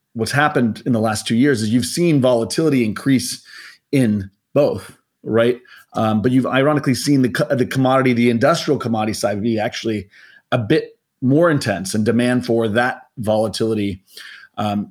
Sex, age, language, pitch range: male, 30-49, English, 105-130 Hz